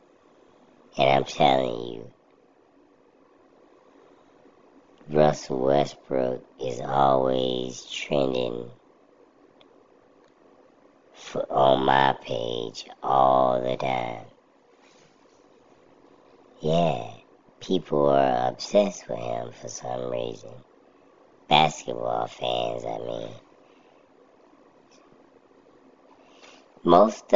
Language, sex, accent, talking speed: English, male, American, 65 wpm